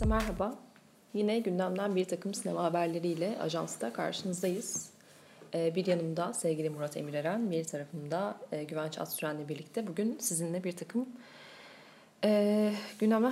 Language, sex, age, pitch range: Turkish, female, 30-49, 165-220 Hz